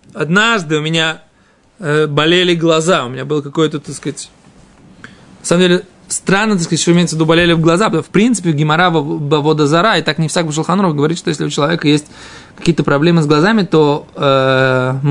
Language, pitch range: Russian, 155-195 Hz